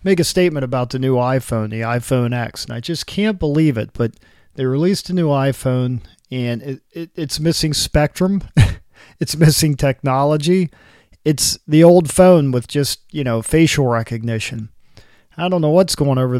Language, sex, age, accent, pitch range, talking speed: English, male, 40-59, American, 125-155 Hz, 170 wpm